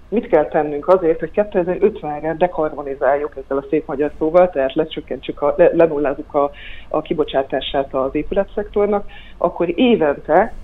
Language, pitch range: Hungarian, 140-175 Hz